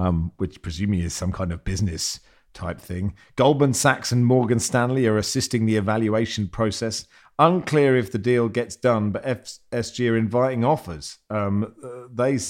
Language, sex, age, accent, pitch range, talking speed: English, male, 40-59, British, 110-130 Hz, 160 wpm